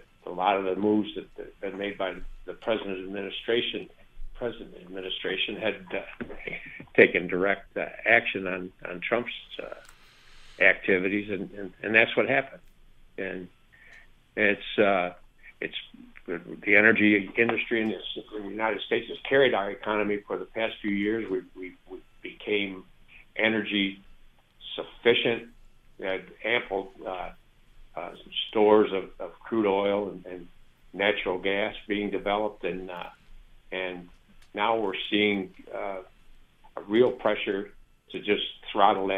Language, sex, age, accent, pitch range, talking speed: English, male, 60-79, American, 90-105 Hz, 140 wpm